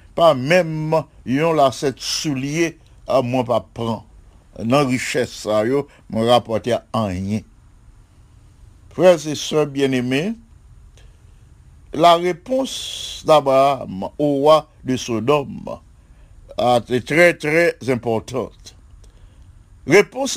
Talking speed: 100 wpm